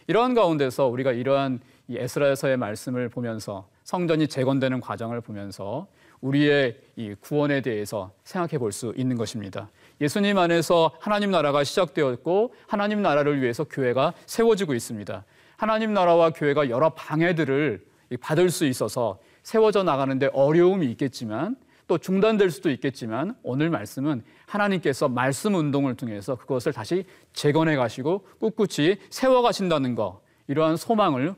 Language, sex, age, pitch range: Korean, male, 40-59, 125-180 Hz